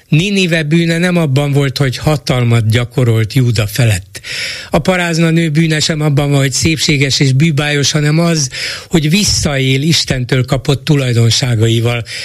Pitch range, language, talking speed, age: 120-145 Hz, Hungarian, 130 wpm, 60-79